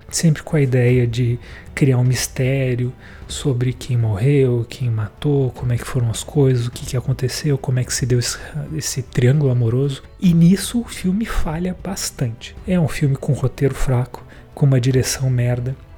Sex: male